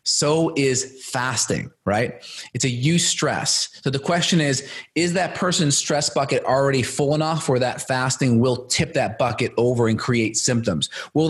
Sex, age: male, 30-49